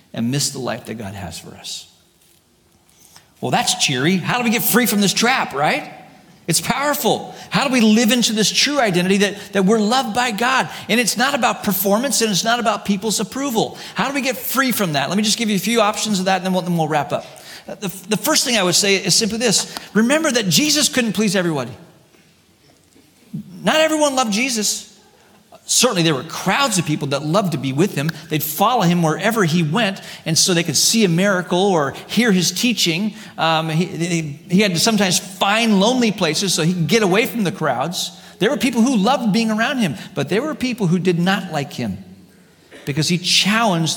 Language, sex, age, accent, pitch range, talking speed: English, male, 40-59, American, 165-220 Hz, 215 wpm